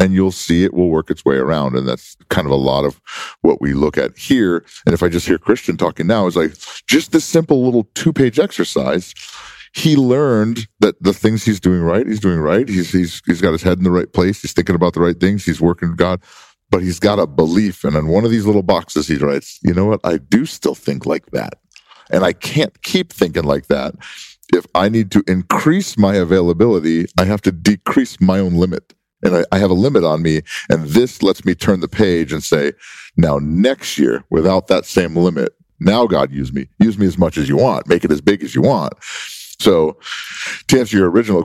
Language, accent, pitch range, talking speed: English, American, 80-100 Hz, 230 wpm